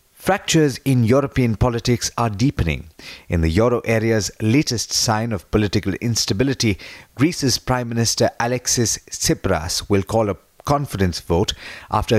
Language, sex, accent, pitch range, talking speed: English, male, Indian, 95-125 Hz, 130 wpm